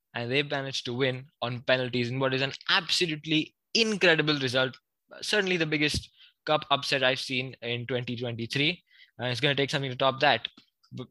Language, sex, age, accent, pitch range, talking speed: English, male, 20-39, Indian, 120-150 Hz, 180 wpm